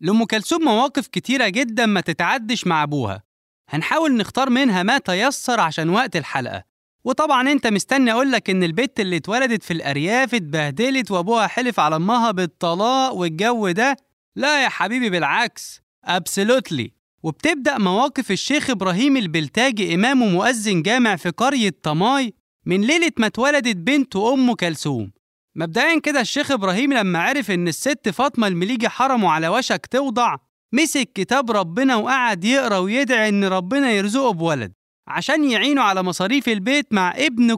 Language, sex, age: Arabic, male, 20-39